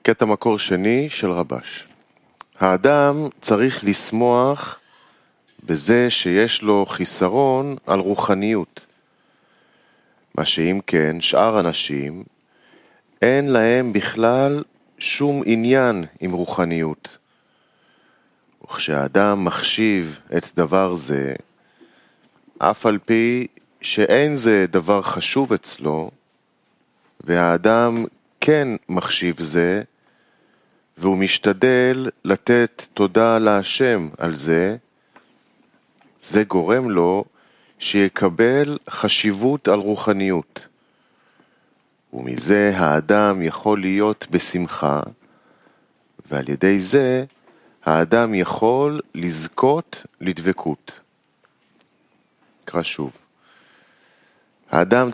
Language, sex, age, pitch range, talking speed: Hebrew, male, 30-49, 90-120 Hz, 80 wpm